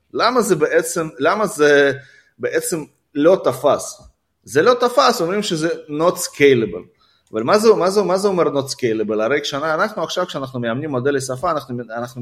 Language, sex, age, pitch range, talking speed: Hebrew, male, 30-49, 140-210 Hz, 170 wpm